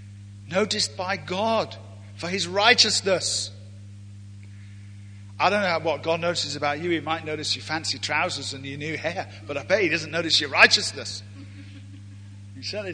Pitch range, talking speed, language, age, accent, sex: 100-165 Hz, 160 wpm, English, 50-69, British, male